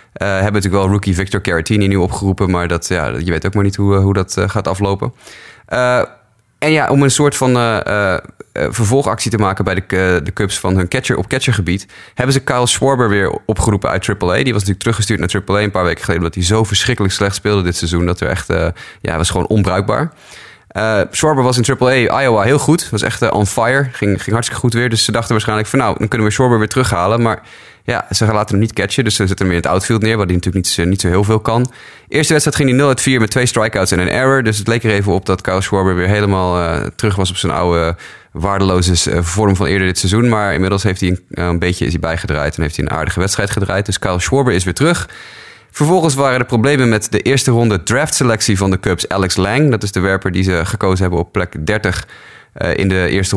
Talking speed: 245 wpm